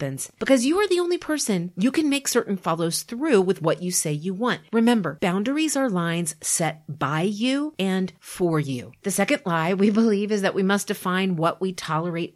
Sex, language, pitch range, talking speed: female, English, 160-225 Hz, 200 wpm